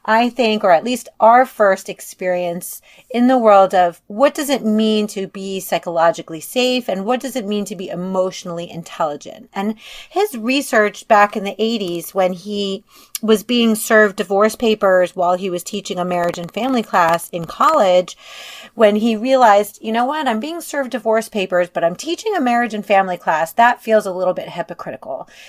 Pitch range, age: 185-230 Hz, 30-49